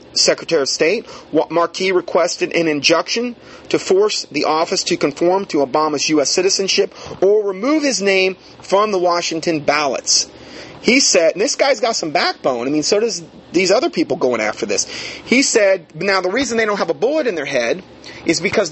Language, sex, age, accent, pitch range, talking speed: English, male, 30-49, American, 160-230 Hz, 185 wpm